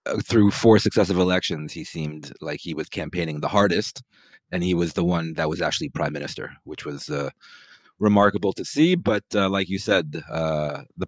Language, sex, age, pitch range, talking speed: English, male, 30-49, 95-115 Hz, 190 wpm